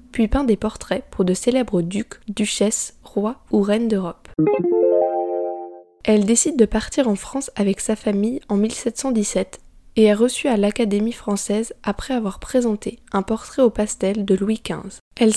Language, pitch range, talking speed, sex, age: French, 195-240 Hz, 160 wpm, female, 10-29